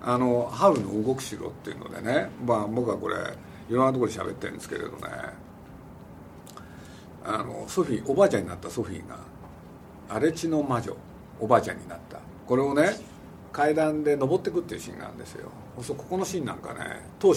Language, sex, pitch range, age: Japanese, male, 110-165 Hz, 50-69